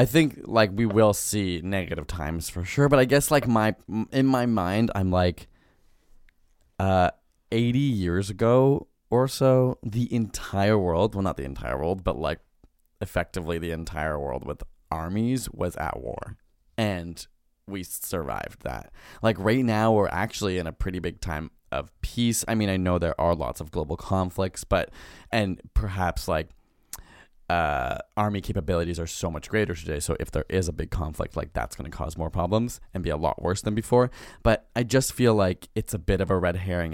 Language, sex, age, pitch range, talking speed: English, male, 20-39, 85-110 Hz, 190 wpm